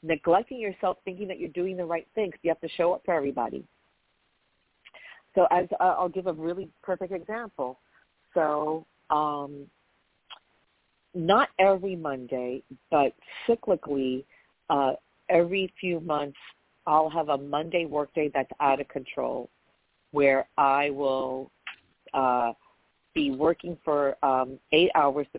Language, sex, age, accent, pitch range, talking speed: English, female, 50-69, American, 135-180 Hz, 130 wpm